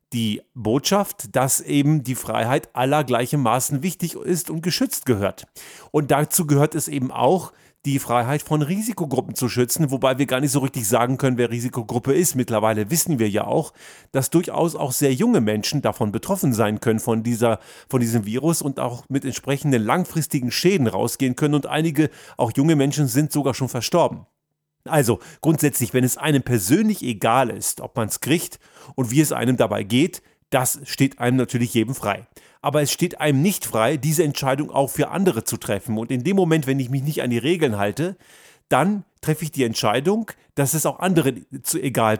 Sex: male